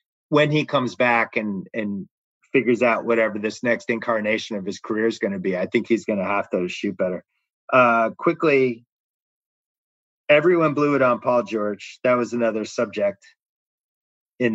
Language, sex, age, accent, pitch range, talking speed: English, male, 30-49, American, 115-155 Hz, 170 wpm